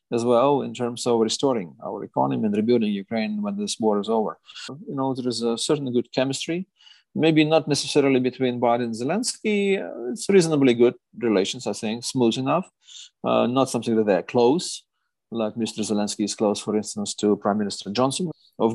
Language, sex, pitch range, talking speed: English, male, 110-140 Hz, 180 wpm